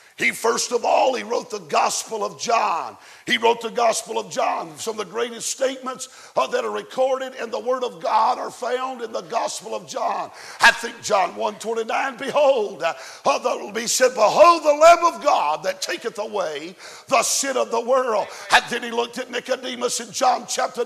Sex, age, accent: male, 50-69, American